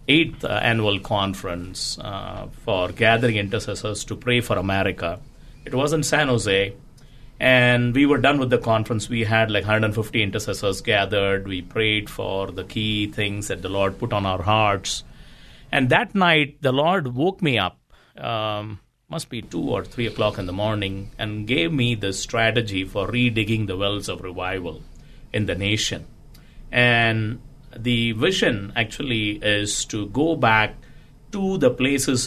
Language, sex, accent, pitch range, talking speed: English, male, Indian, 105-135 Hz, 160 wpm